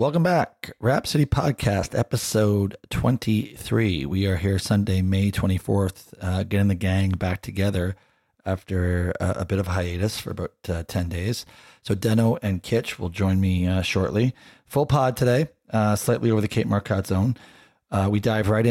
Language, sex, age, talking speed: English, male, 40-59, 170 wpm